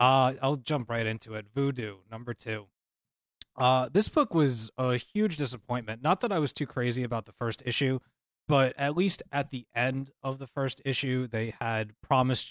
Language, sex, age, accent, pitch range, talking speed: English, male, 20-39, American, 115-145 Hz, 185 wpm